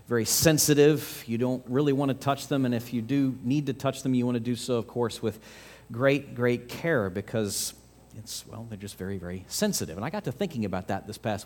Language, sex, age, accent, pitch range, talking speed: English, male, 40-59, American, 80-135 Hz, 235 wpm